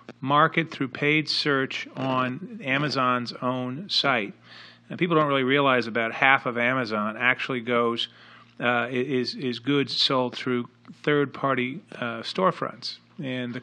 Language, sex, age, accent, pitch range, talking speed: English, male, 40-59, American, 120-145 Hz, 130 wpm